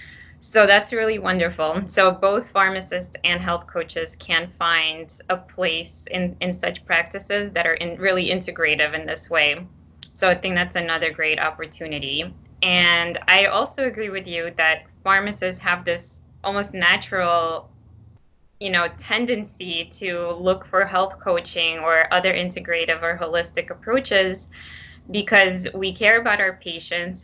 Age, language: 20-39, English